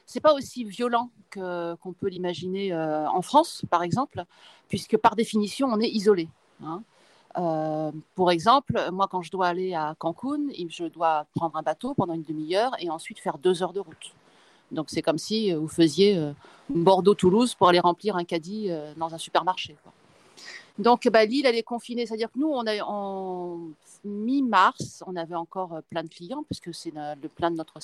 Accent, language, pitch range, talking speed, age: French, French, 165-210 Hz, 185 wpm, 40-59